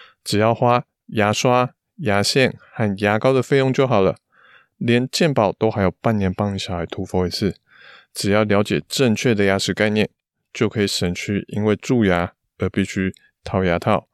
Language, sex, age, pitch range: Chinese, male, 20-39, 95-110 Hz